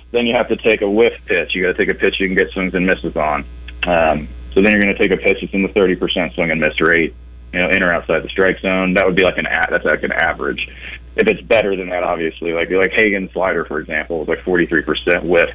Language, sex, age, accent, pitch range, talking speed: English, male, 30-49, American, 80-100 Hz, 280 wpm